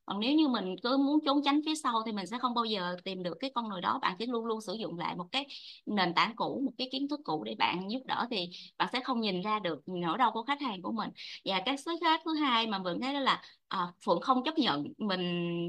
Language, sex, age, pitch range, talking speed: Vietnamese, female, 20-39, 200-265 Hz, 285 wpm